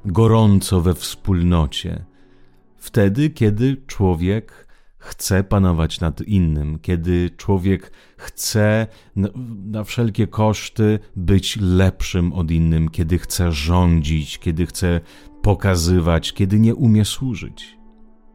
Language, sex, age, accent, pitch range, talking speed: Italian, male, 40-59, Polish, 85-105 Hz, 100 wpm